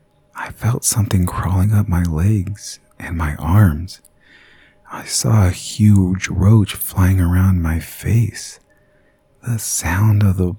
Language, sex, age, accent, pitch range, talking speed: English, male, 40-59, American, 90-105 Hz, 130 wpm